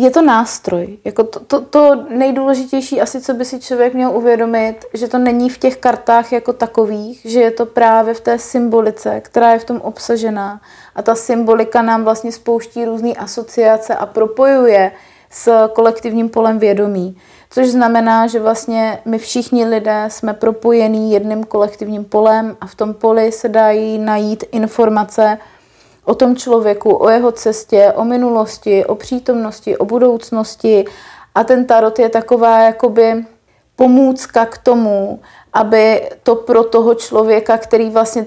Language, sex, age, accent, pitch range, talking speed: Czech, female, 30-49, native, 215-235 Hz, 150 wpm